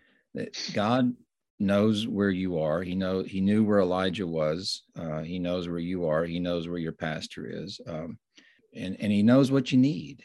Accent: American